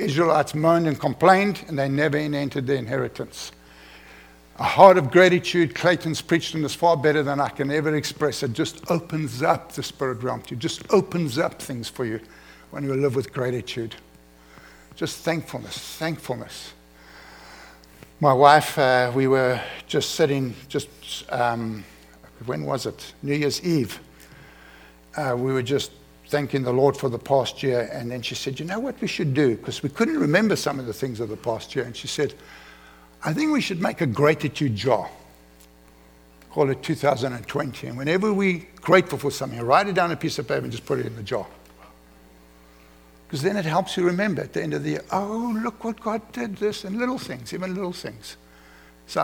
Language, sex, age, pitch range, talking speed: English, male, 60-79, 100-165 Hz, 190 wpm